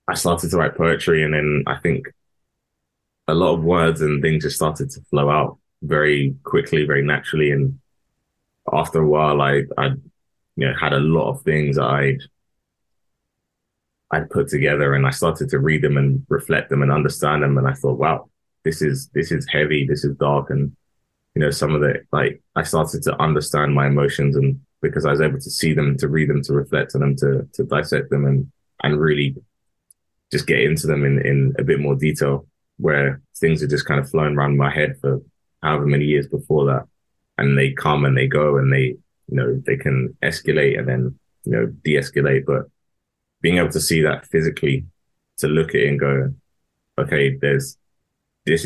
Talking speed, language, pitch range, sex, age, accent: 195 wpm, English, 70-75 Hz, male, 20-39, British